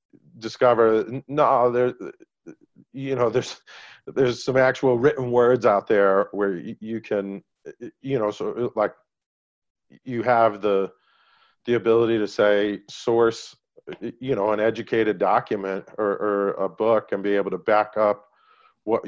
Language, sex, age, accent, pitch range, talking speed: English, male, 40-59, American, 95-115 Hz, 140 wpm